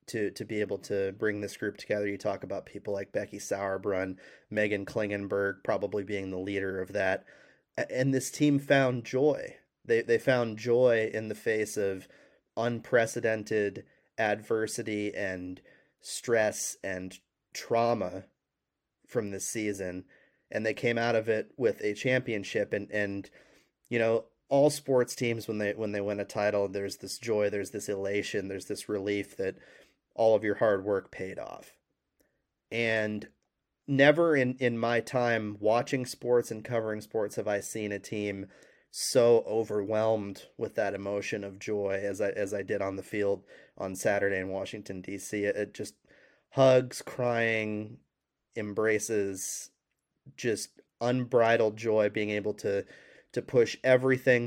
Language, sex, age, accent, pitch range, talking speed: English, male, 30-49, American, 100-115 Hz, 150 wpm